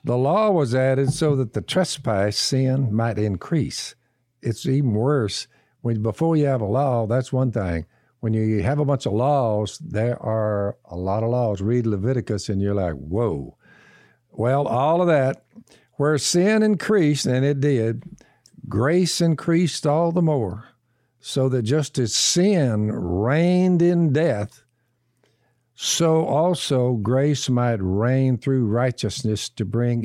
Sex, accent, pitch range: male, American, 115-150 Hz